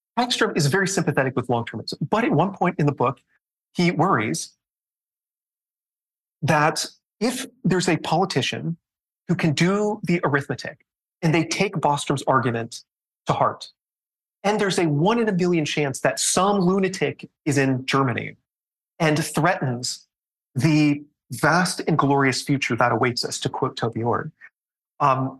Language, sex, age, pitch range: English, male, 30-49, 135-175 Hz